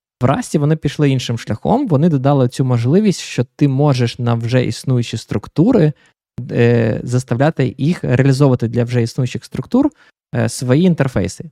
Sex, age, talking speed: male, 20-39, 140 wpm